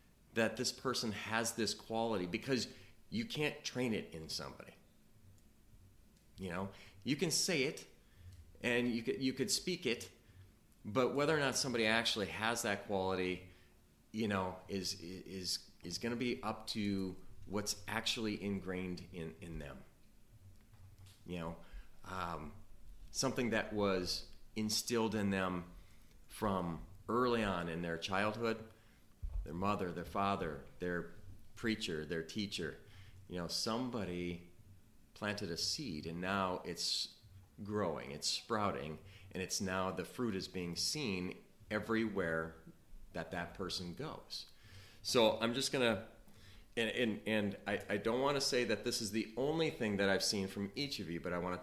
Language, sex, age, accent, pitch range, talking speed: English, male, 30-49, American, 90-110 Hz, 150 wpm